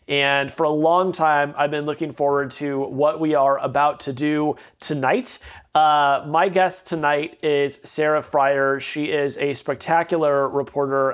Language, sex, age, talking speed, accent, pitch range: English, male, 30-49, 155 wpm, American, 145-170 Hz